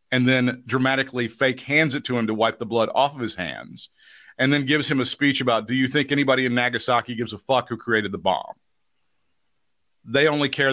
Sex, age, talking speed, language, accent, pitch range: male, 50-69, 220 wpm, English, American, 115-135 Hz